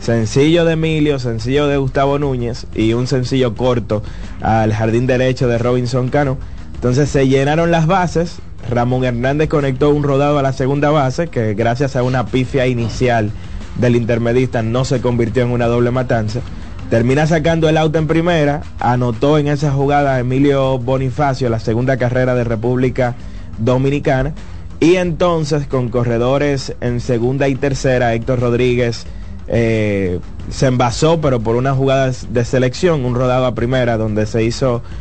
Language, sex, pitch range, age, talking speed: Spanish, male, 115-140 Hz, 30-49, 155 wpm